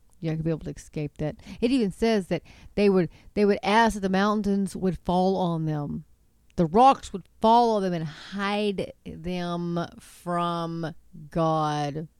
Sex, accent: female, American